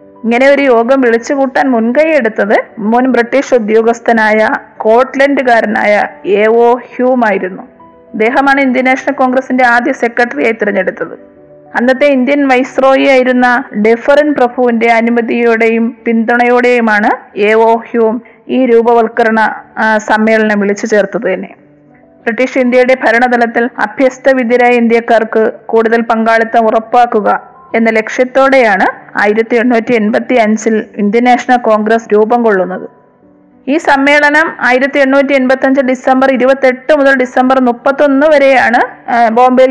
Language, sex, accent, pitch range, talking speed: Malayalam, female, native, 225-260 Hz, 105 wpm